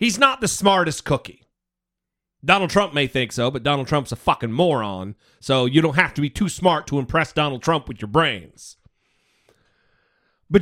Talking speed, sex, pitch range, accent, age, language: 180 wpm, male, 145-220 Hz, American, 40-59, English